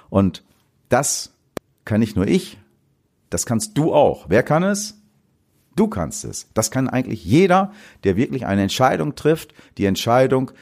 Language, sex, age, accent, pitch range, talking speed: German, male, 40-59, German, 100-150 Hz, 155 wpm